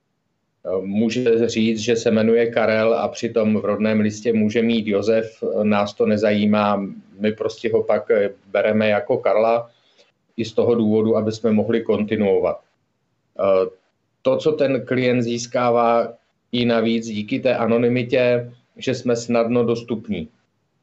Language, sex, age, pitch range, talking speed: Czech, male, 40-59, 105-115 Hz, 135 wpm